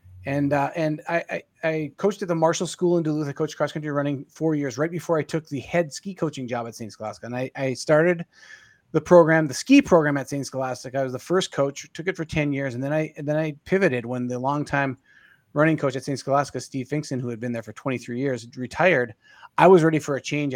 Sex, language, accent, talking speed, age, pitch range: male, English, American, 250 wpm, 30-49, 125-155 Hz